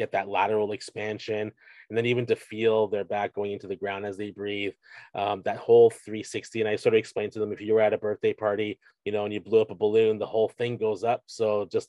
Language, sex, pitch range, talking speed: English, male, 105-125 Hz, 255 wpm